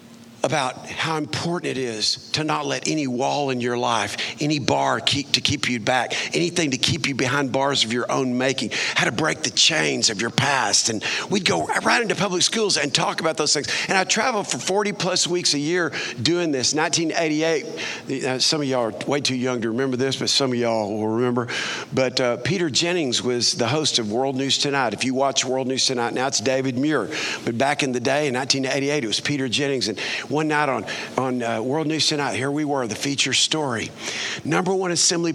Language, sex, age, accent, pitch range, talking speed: English, male, 50-69, American, 130-165 Hz, 215 wpm